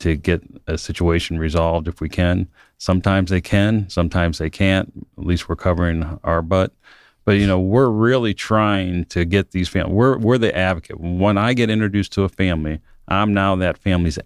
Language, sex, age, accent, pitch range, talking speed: English, male, 40-59, American, 85-100 Hz, 190 wpm